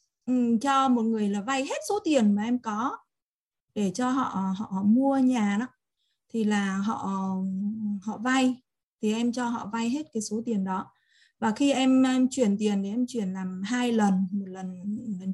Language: Vietnamese